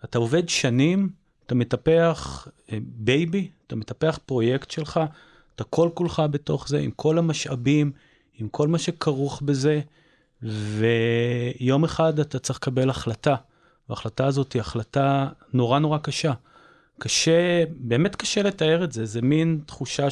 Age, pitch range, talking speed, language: 30-49, 125-160 Hz, 135 wpm, Hebrew